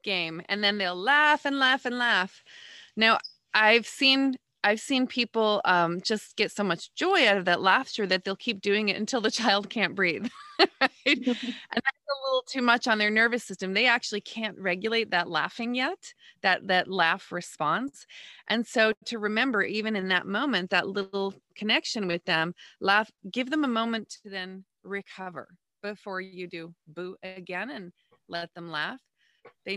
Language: English